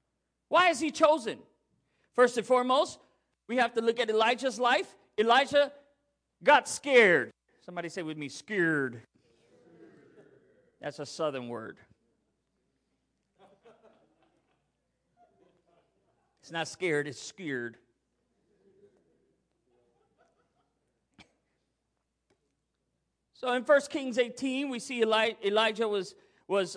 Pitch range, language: 185-255 Hz, English